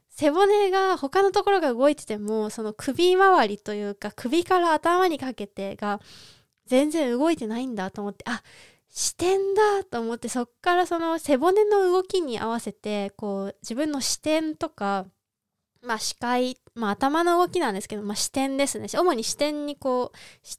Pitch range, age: 220-320 Hz, 20-39